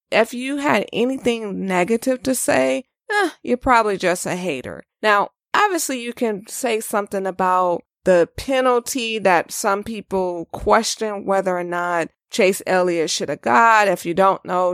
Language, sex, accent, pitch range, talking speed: English, female, American, 185-245 Hz, 155 wpm